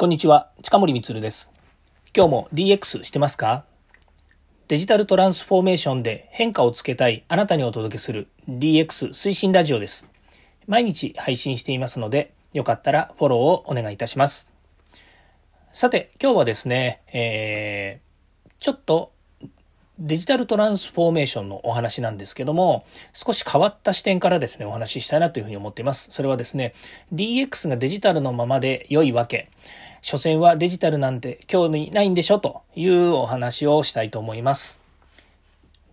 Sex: male